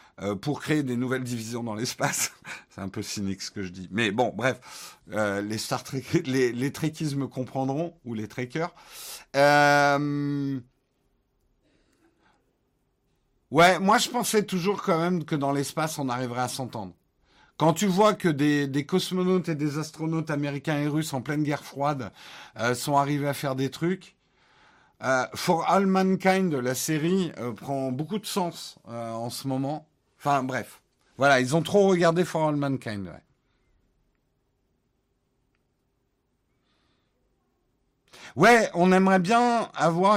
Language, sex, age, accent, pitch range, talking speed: French, male, 50-69, French, 125-165 Hz, 150 wpm